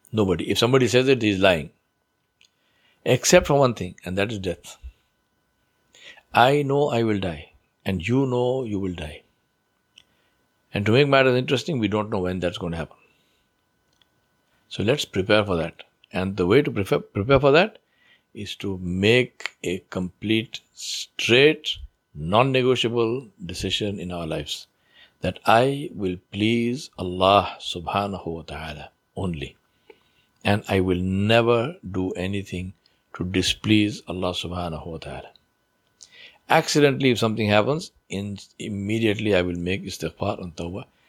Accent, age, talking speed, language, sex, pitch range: Indian, 60-79, 140 wpm, English, male, 90-115 Hz